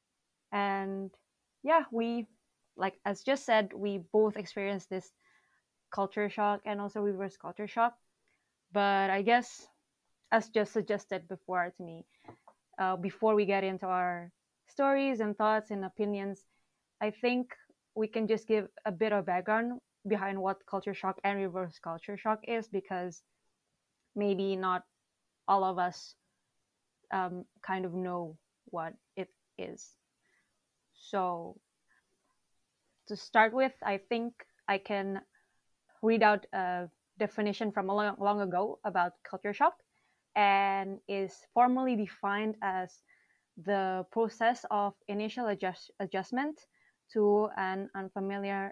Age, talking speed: 20-39, 125 wpm